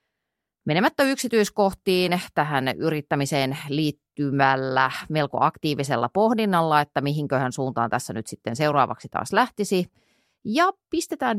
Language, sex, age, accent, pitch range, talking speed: Finnish, female, 30-49, native, 135-210 Hz, 100 wpm